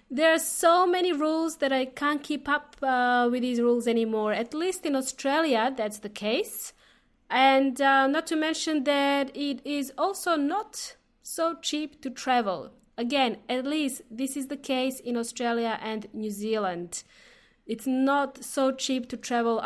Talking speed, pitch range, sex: 165 wpm, 240-295 Hz, female